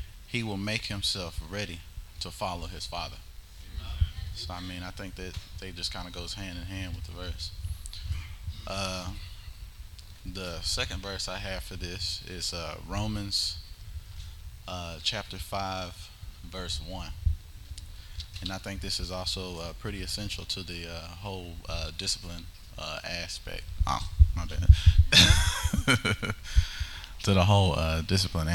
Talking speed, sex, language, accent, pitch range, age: 140 wpm, male, English, American, 85-95 Hz, 20-39